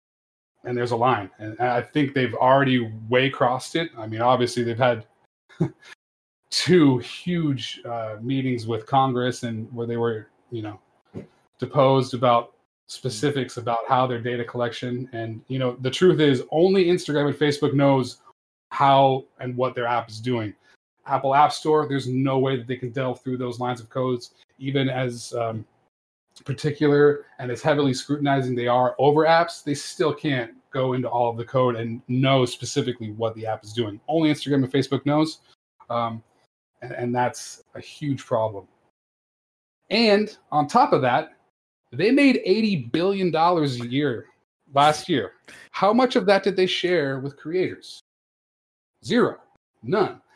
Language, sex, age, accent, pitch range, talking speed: English, male, 30-49, American, 120-145 Hz, 160 wpm